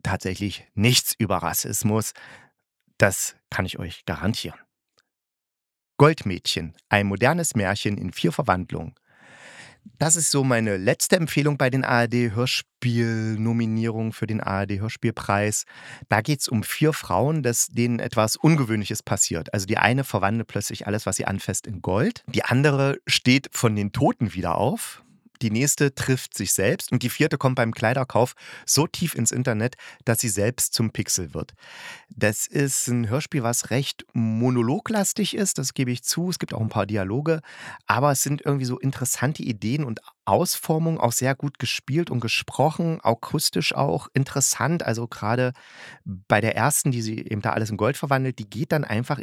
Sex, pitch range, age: male, 110-140 Hz, 40-59